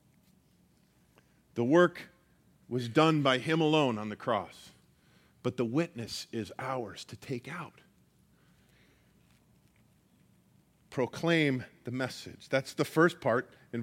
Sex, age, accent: male, 40-59, American